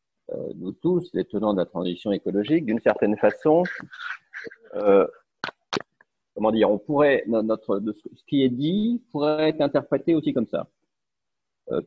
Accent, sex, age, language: French, male, 40-59, French